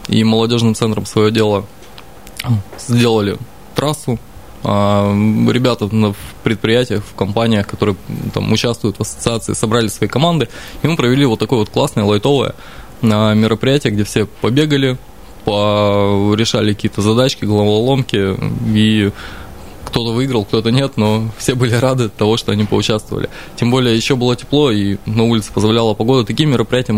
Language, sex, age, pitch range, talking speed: Russian, male, 20-39, 105-125 Hz, 135 wpm